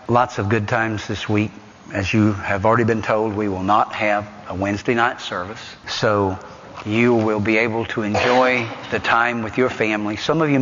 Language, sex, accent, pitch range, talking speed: English, male, American, 100-115 Hz, 200 wpm